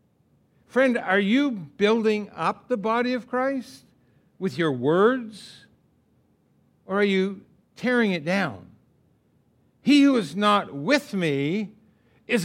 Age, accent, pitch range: 60-79, American, 135-205 Hz